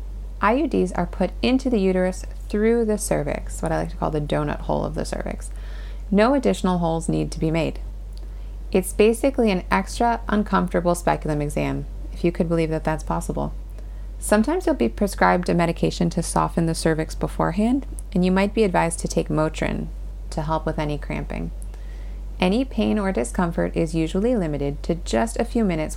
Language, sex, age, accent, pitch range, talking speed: English, female, 30-49, American, 155-200 Hz, 180 wpm